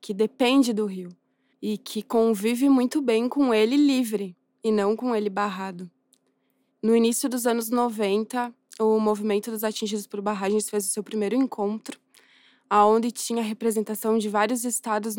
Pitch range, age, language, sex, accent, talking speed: 210-245 Hz, 20-39, Portuguese, female, Brazilian, 155 wpm